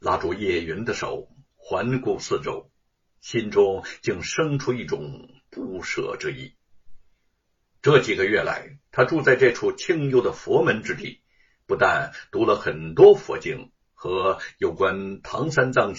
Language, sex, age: Chinese, male, 60-79